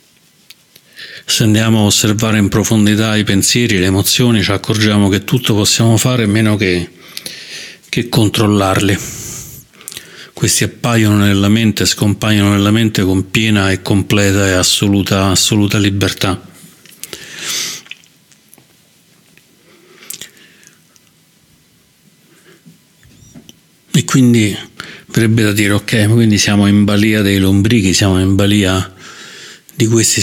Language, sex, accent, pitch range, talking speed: Italian, male, native, 95-110 Hz, 105 wpm